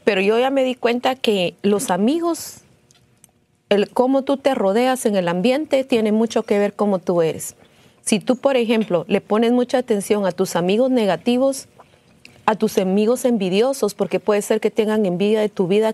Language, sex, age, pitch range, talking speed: Spanish, female, 40-59, 200-245 Hz, 185 wpm